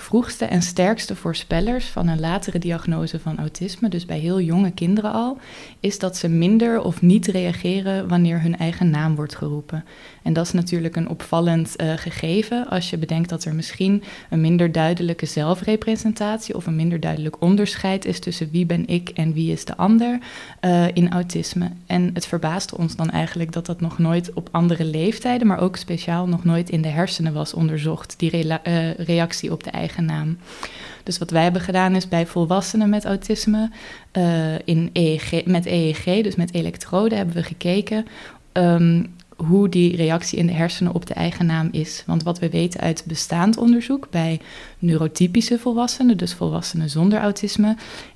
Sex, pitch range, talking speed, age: female, 165-190 Hz, 170 wpm, 20-39